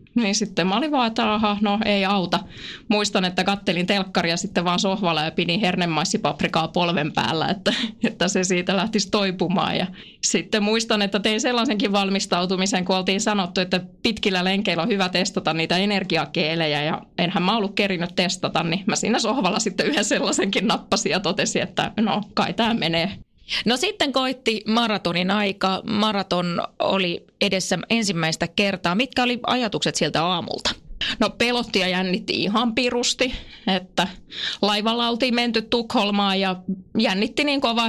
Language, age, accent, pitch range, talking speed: Finnish, 20-39, native, 175-215 Hz, 155 wpm